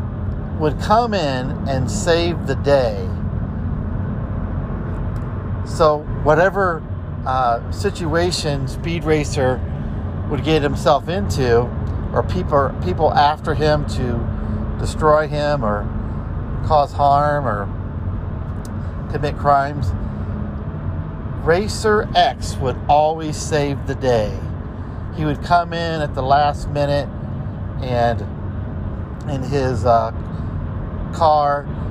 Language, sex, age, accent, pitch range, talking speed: English, male, 50-69, American, 95-130 Hz, 95 wpm